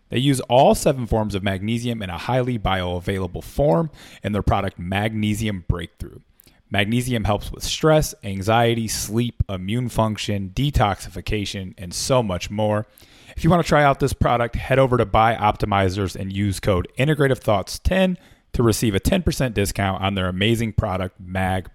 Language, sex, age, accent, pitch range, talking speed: English, male, 30-49, American, 95-125 Hz, 155 wpm